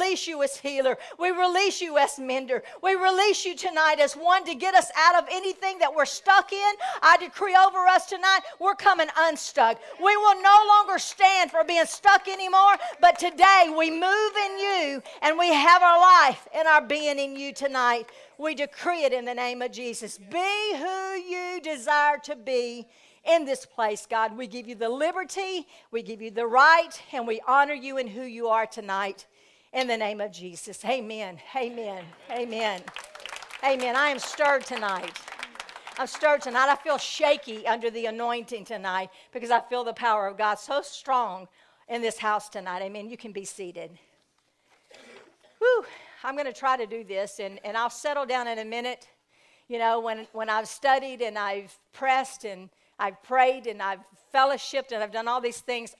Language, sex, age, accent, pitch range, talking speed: English, female, 50-69, American, 230-340 Hz, 185 wpm